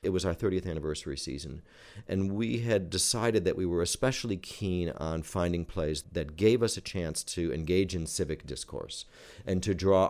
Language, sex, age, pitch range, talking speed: English, male, 50-69, 85-105 Hz, 185 wpm